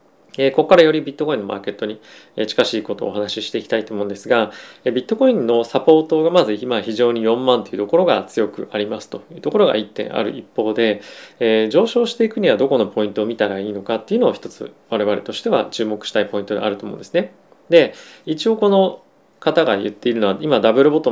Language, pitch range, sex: Japanese, 105-160 Hz, male